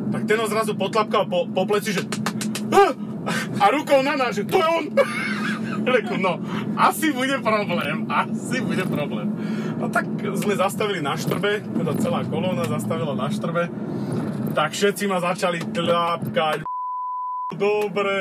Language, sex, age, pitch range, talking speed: Slovak, male, 30-49, 190-220 Hz, 130 wpm